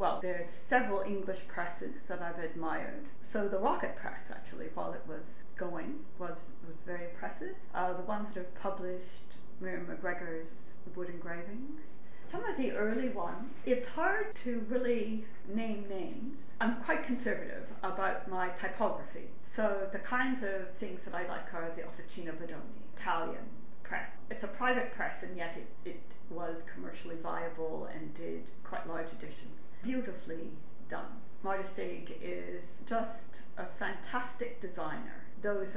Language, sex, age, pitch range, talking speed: English, female, 40-59, 180-230 Hz, 145 wpm